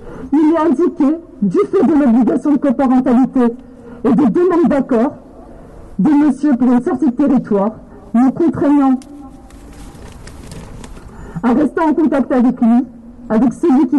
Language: French